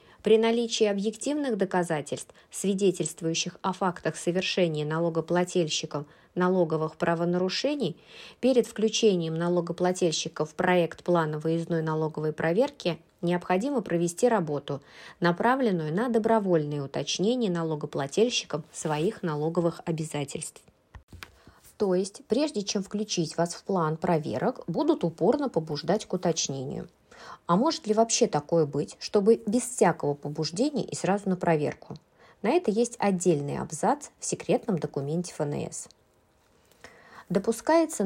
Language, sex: Russian, female